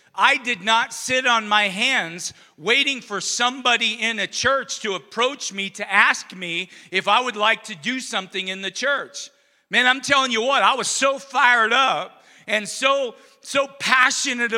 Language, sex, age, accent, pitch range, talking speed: English, male, 40-59, American, 220-260 Hz, 175 wpm